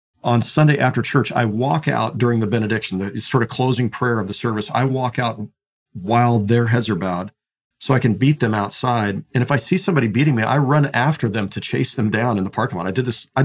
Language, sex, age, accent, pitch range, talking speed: English, male, 50-69, American, 105-130 Hz, 245 wpm